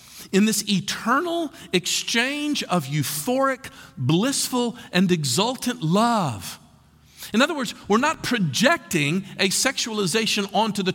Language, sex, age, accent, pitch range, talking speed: English, male, 50-69, American, 150-230 Hz, 110 wpm